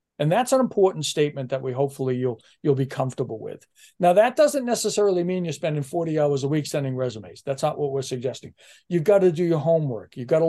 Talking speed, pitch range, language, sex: 230 wpm, 135-170 Hz, English, male